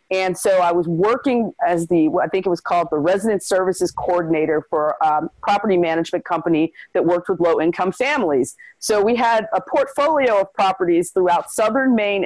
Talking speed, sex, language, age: 185 wpm, female, English, 40-59